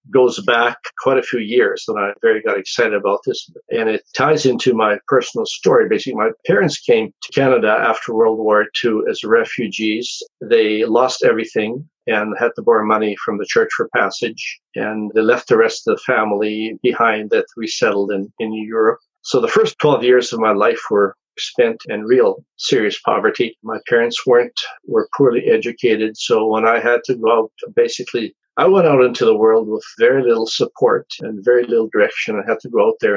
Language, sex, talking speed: English, male, 195 wpm